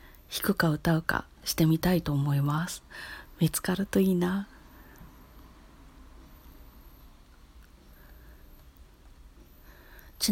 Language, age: Japanese, 40-59